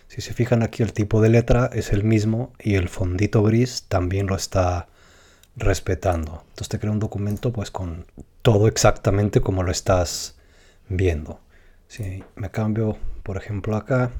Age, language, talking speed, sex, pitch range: 30-49, Spanish, 160 wpm, male, 90-110 Hz